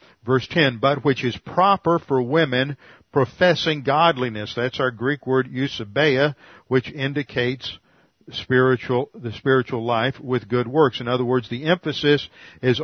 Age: 50-69